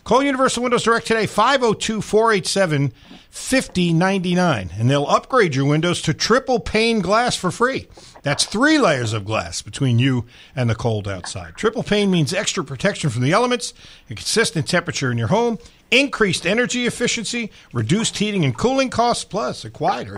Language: English